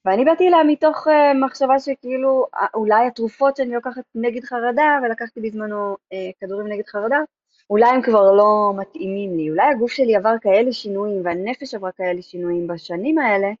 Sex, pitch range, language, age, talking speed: female, 185-255 Hz, Hebrew, 20-39, 155 wpm